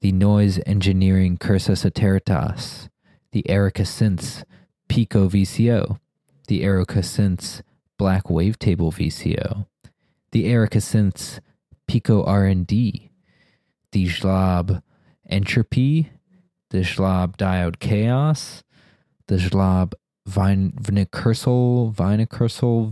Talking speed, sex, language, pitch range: 85 wpm, male, English, 90-105 Hz